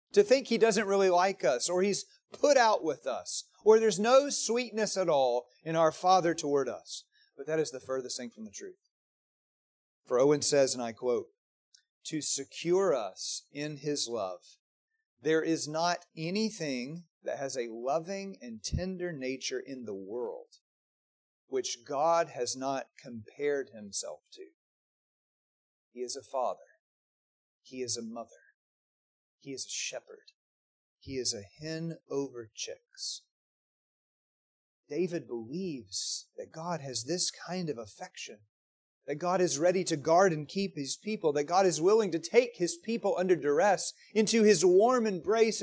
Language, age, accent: English, 40-59, American